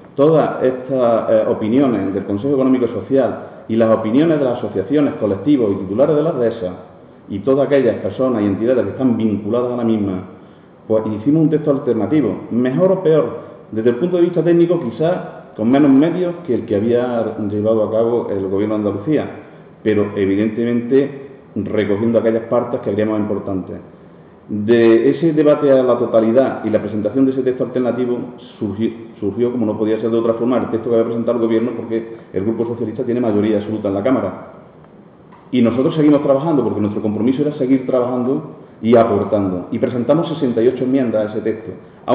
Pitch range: 105-135 Hz